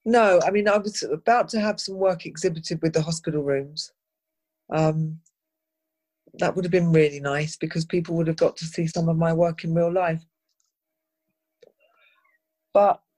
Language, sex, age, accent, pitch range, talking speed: English, female, 40-59, British, 160-205 Hz, 170 wpm